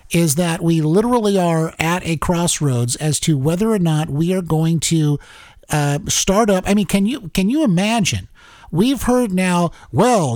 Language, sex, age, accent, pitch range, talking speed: English, male, 50-69, American, 155-210 Hz, 180 wpm